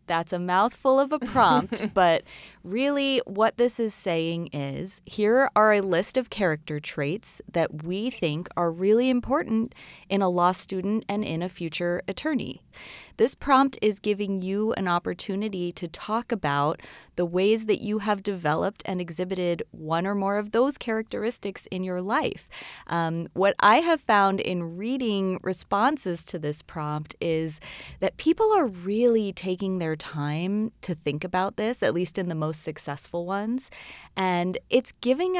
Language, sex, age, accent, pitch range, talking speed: English, female, 20-39, American, 165-215 Hz, 160 wpm